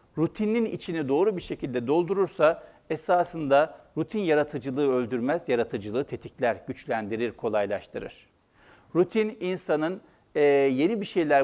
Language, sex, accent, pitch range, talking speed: Turkish, male, native, 135-195 Hz, 100 wpm